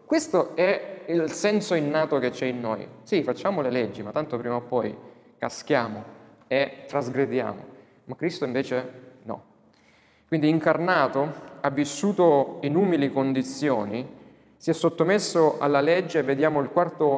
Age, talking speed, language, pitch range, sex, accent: 30-49, 140 wpm, Italian, 125-160 Hz, male, native